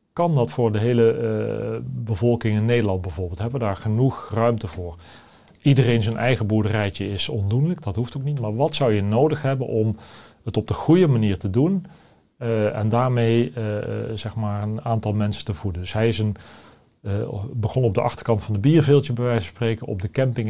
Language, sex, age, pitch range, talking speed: Dutch, male, 40-59, 105-125 Hz, 195 wpm